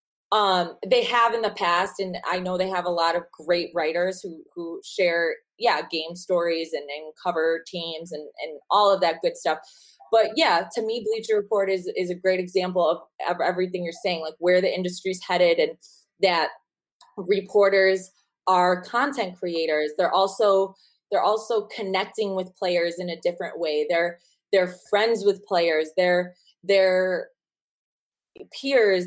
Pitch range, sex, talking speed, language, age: 175-205 Hz, female, 160 wpm, English, 20-39